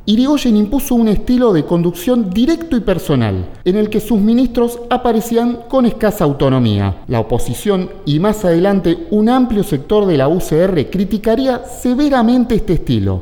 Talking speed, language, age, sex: 150 wpm, Spanish, 40-59, male